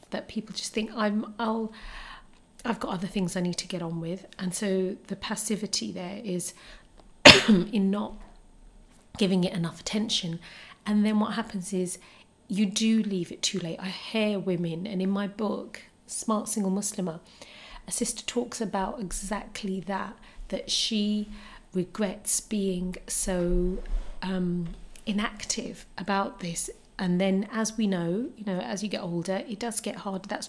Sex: female